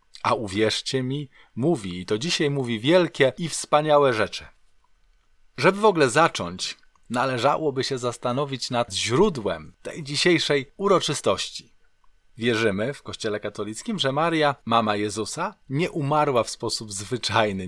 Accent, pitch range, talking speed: native, 110-150 Hz, 125 wpm